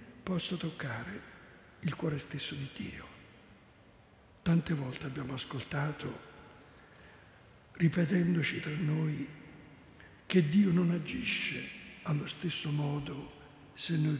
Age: 60-79